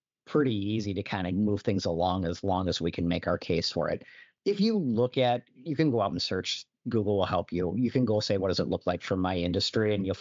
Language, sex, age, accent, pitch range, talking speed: English, male, 50-69, American, 95-120 Hz, 270 wpm